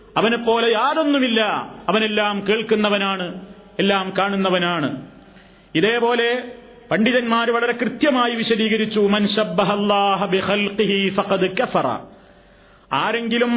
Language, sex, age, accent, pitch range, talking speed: Malayalam, male, 40-59, native, 205-240 Hz, 55 wpm